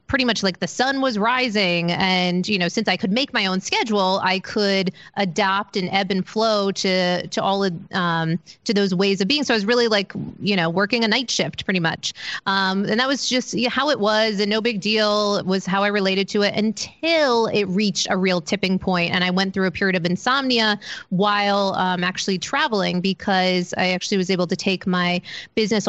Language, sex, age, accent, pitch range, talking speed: English, female, 30-49, American, 185-220 Hz, 215 wpm